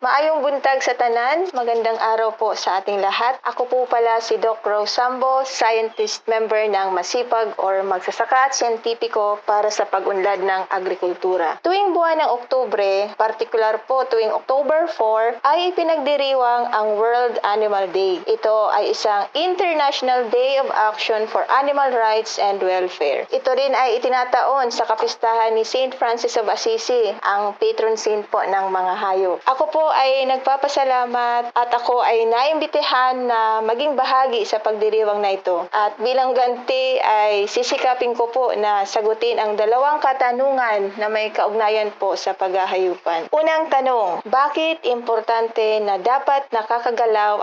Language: Filipino